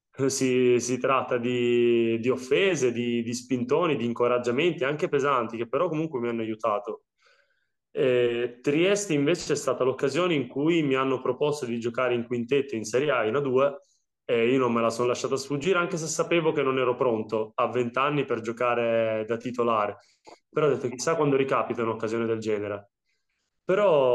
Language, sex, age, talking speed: Italian, male, 20-39, 175 wpm